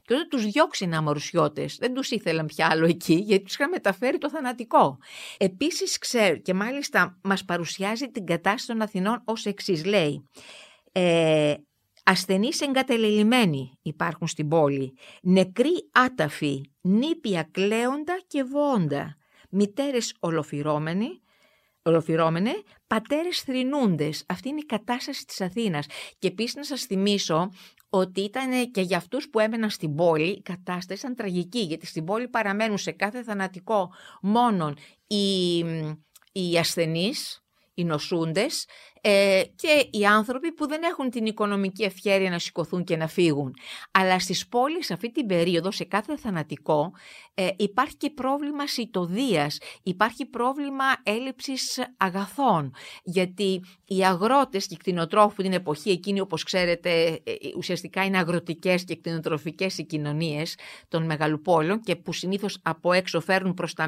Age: 50-69